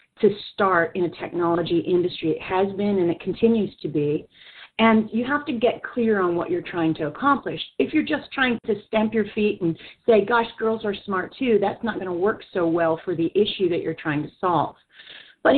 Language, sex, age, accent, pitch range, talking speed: English, female, 40-59, American, 160-215 Hz, 220 wpm